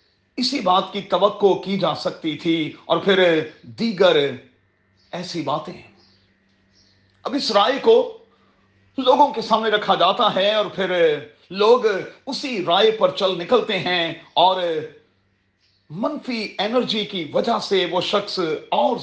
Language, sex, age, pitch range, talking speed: Urdu, male, 40-59, 165-225 Hz, 130 wpm